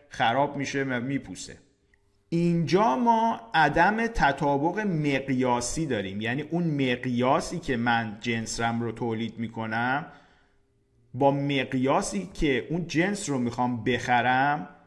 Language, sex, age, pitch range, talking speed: Persian, male, 50-69, 120-155 Hz, 115 wpm